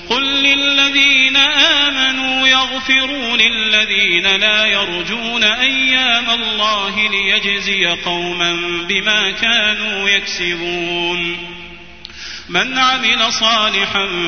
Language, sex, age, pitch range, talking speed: Arabic, male, 30-49, 175-225 Hz, 70 wpm